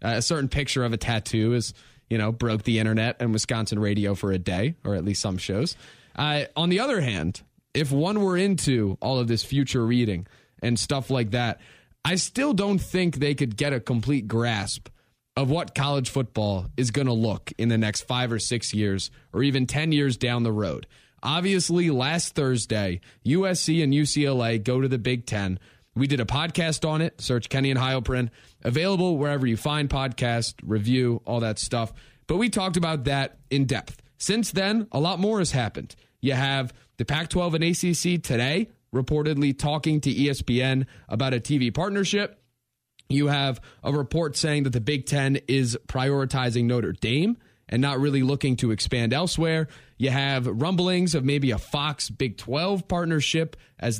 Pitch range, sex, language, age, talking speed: 115-150 Hz, male, English, 20-39, 180 wpm